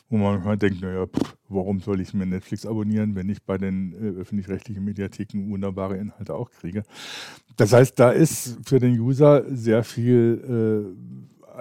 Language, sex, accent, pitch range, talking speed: German, male, German, 100-115 Hz, 165 wpm